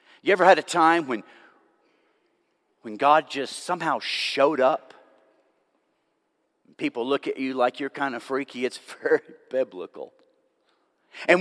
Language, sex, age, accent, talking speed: English, male, 40-59, American, 130 wpm